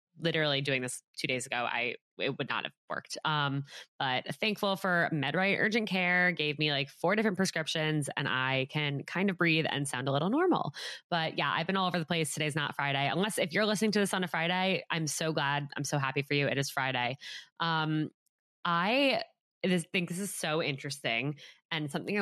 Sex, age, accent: female, 20-39, American